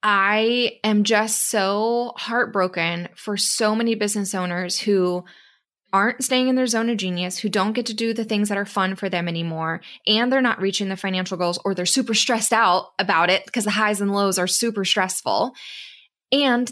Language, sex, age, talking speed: English, female, 20-39, 195 wpm